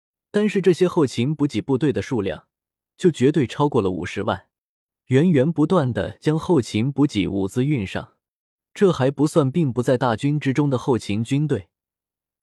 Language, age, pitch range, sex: Chinese, 20-39, 110-155 Hz, male